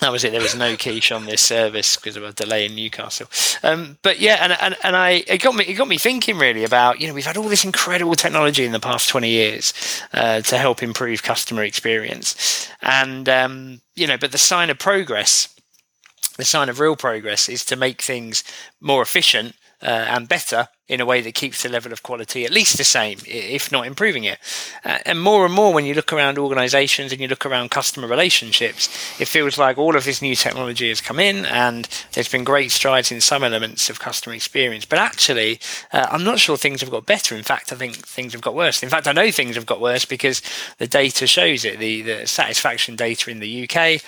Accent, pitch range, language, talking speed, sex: British, 115-145 Hz, English, 225 wpm, male